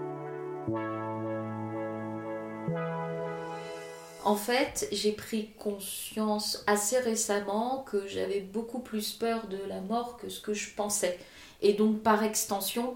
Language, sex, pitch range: French, female, 185-220 Hz